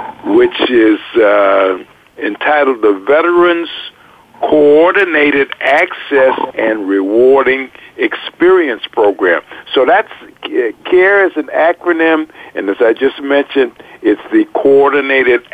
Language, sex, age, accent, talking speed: English, male, 60-79, American, 100 wpm